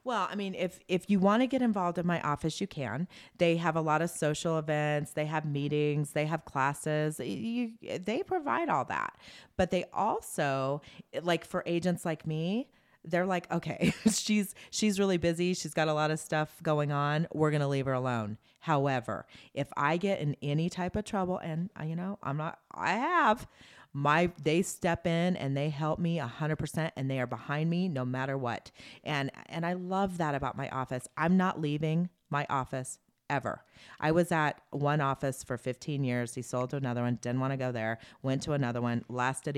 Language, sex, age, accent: English, female, 30-49, American